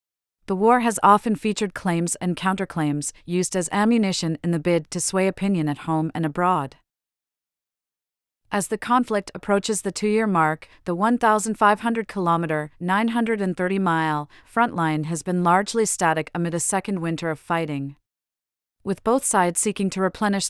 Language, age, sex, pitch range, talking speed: English, 40-59, female, 165-205 Hz, 140 wpm